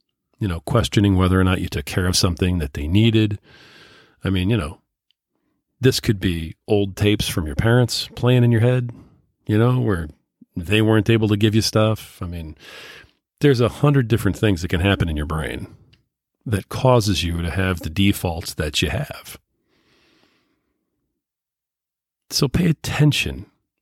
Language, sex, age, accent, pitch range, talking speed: English, male, 40-59, American, 90-115 Hz, 165 wpm